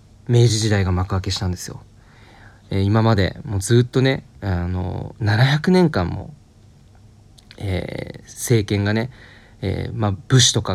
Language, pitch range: Japanese, 100-120 Hz